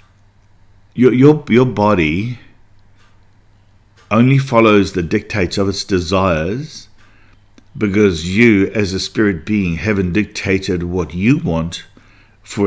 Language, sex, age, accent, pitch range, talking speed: English, male, 50-69, Australian, 90-105 Hz, 110 wpm